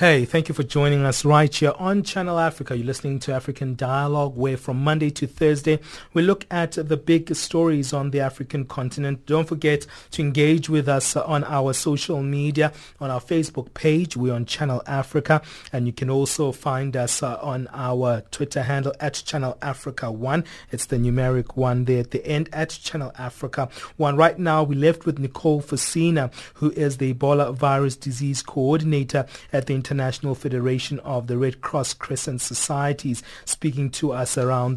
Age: 30-49